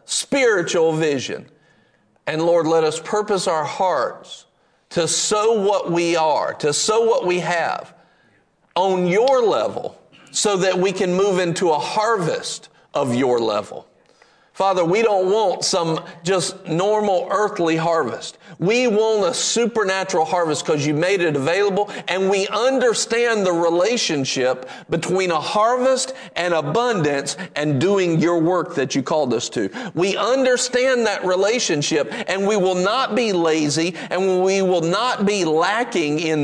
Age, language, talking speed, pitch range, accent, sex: 50-69, English, 145 wpm, 160-210 Hz, American, male